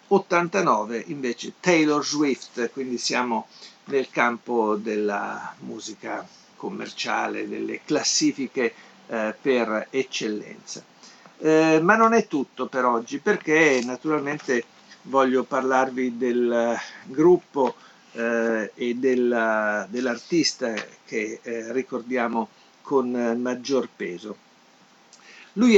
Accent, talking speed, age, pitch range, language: native, 95 wpm, 50-69, 120-155 Hz, Italian